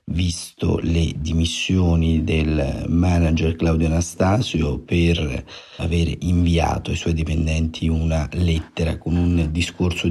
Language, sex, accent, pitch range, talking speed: Italian, male, native, 80-90 Hz, 105 wpm